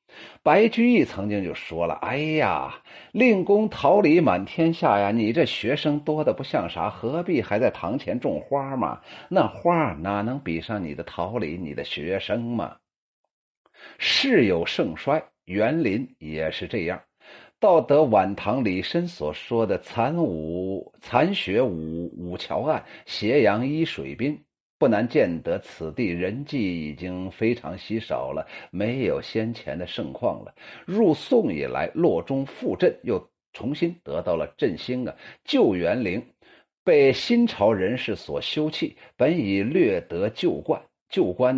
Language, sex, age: Chinese, male, 50-69